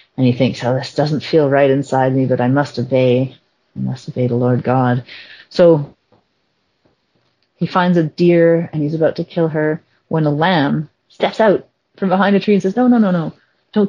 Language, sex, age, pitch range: English, female, 40-59, 125-175 Hz